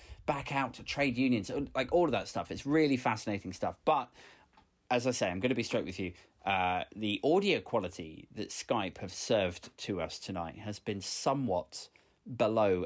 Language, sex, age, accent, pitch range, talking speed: English, male, 30-49, British, 100-130 Hz, 185 wpm